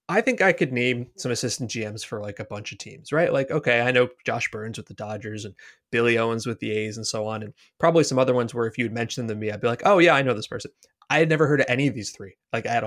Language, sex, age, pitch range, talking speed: English, male, 20-39, 110-135 Hz, 305 wpm